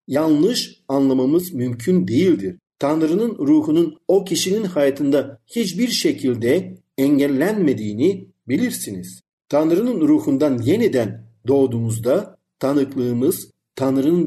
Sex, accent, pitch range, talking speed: male, native, 125-190 Hz, 80 wpm